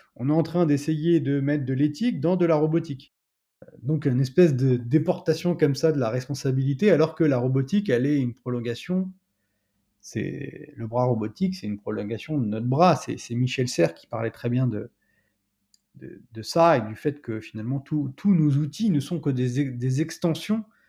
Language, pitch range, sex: French, 120-155 Hz, male